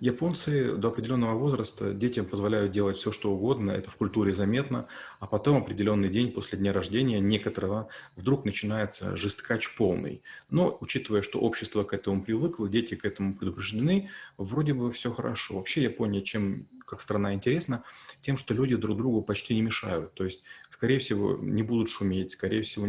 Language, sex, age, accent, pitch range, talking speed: Russian, male, 30-49, native, 100-120 Hz, 170 wpm